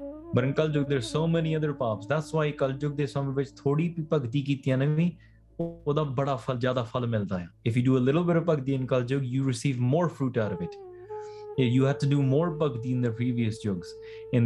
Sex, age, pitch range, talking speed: male, 20-39, 125-155 Hz, 185 wpm